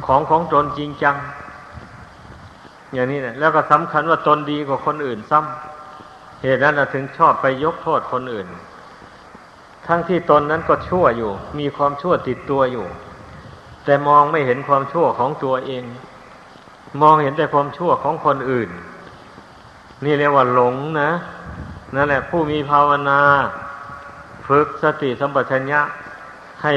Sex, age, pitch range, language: male, 60-79, 130-150 Hz, Thai